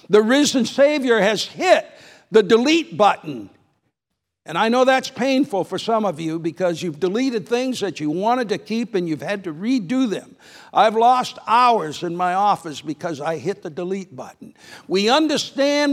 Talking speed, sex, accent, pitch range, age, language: 175 wpm, male, American, 200-260 Hz, 60-79, English